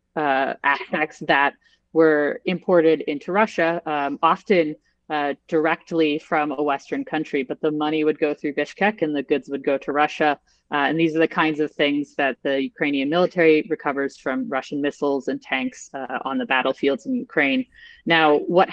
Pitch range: 145-175 Hz